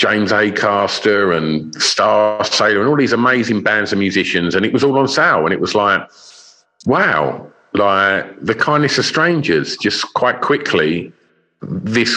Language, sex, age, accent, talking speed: English, male, 50-69, British, 165 wpm